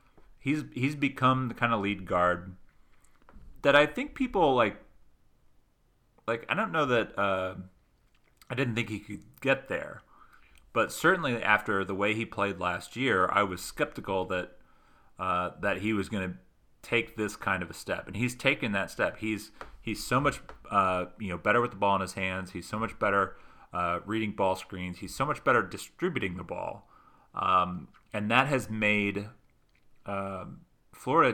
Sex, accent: male, American